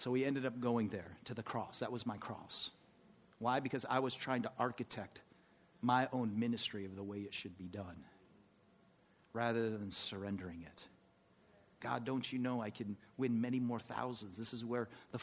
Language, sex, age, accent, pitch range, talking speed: English, male, 40-59, American, 105-130 Hz, 190 wpm